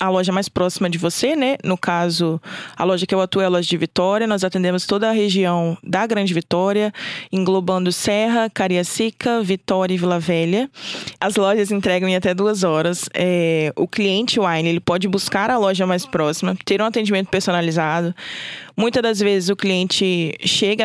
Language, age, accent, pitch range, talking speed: Portuguese, 20-39, Brazilian, 180-215 Hz, 175 wpm